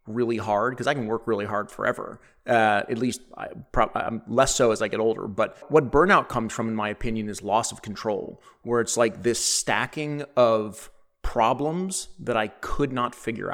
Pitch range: 105-125 Hz